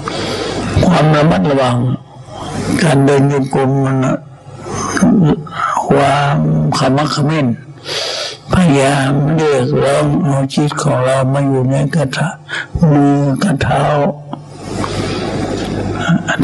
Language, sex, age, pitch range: Thai, male, 60-79, 125-150 Hz